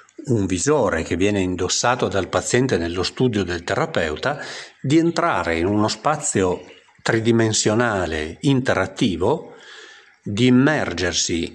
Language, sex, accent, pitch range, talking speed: Italian, male, native, 90-150 Hz, 105 wpm